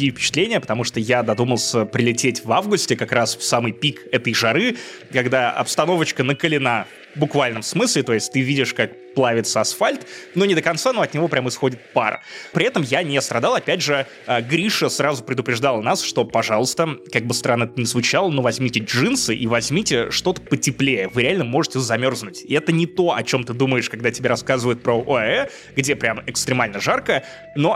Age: 20-39